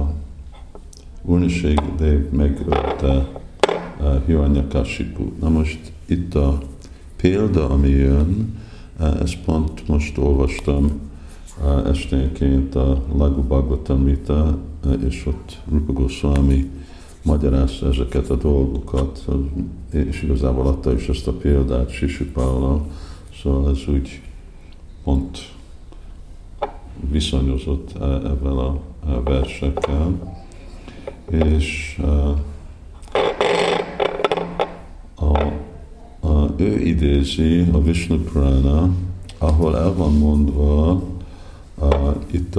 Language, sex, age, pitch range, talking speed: Hungarian, male, 50-69, 70-85 Hz, 75 wpm